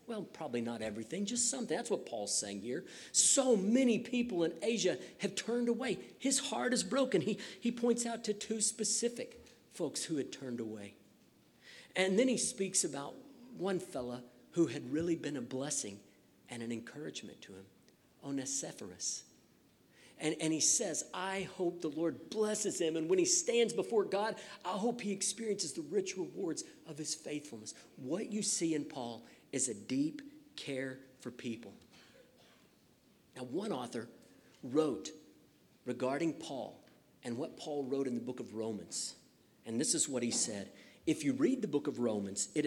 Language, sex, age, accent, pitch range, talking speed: English, male, 50-69, American, 130-220 Hz, 170 wpm